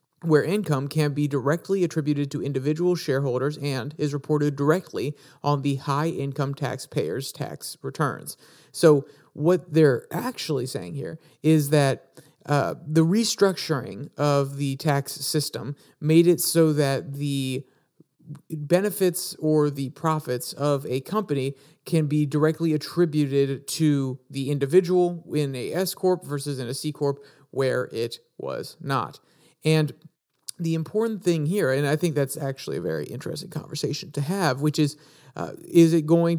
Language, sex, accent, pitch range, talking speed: English, male, American, 140-160 Hz, 140 wpm